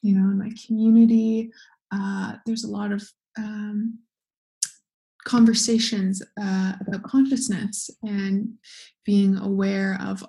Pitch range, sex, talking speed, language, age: 195-225 Hz, female, 110 wpm, English, 20-39